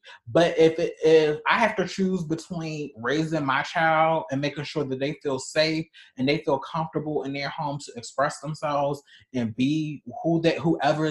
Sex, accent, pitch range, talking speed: male, American, 135-160 Hz, 185 wpm